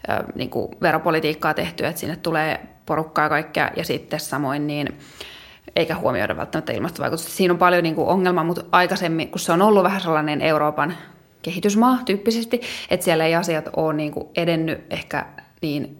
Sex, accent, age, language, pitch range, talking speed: female, native, 20-39, Finnish, 160-190 Hz, 160 wpm